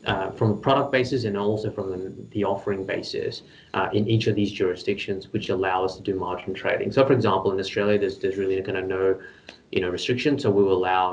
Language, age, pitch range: English, 20-39, 95-105 Hz